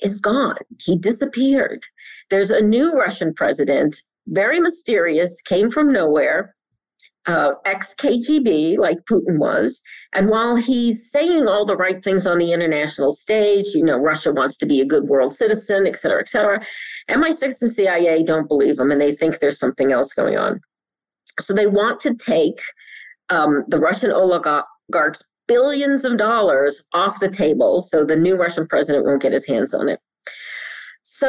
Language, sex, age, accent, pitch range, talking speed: English, female, 50-69, American, 165-235 Hz, 165 wpm